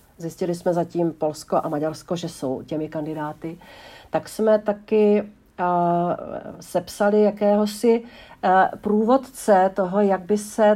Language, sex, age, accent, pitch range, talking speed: Czech, female, 50-69, native, 175-215 Hz, 125 wpm